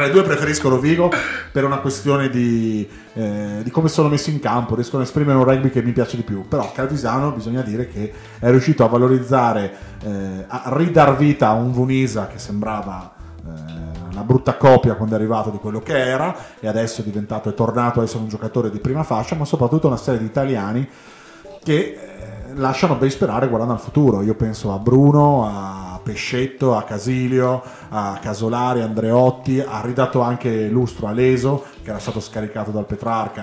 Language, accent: Italian, native